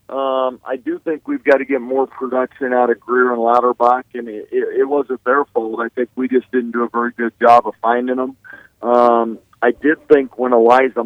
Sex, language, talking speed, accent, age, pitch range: male, English, 220 wpm, American, 40-59, 115-130 Hz